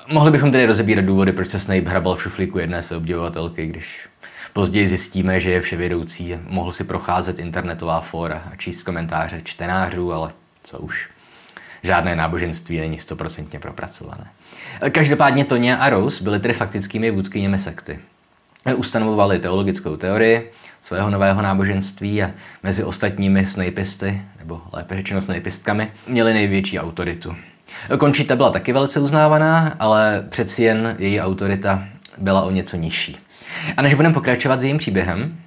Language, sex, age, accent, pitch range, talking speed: Czech, male, 20-39, native, 90-120 Hz, 140 wpm